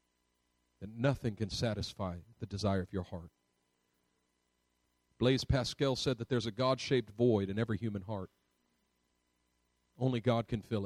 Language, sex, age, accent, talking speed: English, male, 40-59, American, 140 wpm